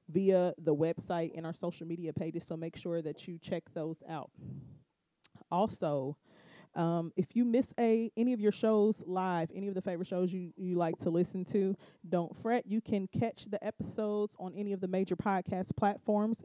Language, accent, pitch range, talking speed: English, American, 175-215 Hz, 185 wpm